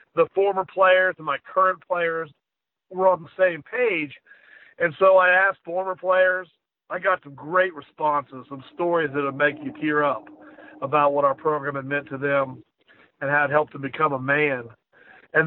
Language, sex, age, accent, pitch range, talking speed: English, male, 50-69, American, 150-190 Hz, 185 wpm